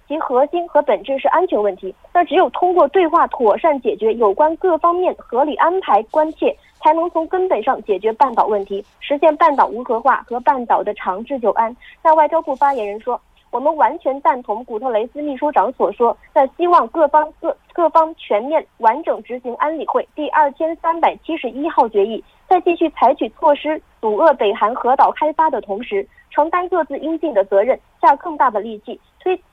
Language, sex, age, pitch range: Korean, female, 30-49, 240-320 Hz